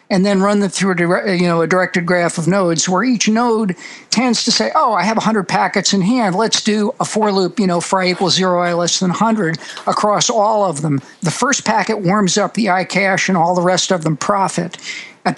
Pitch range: 180-210 Hz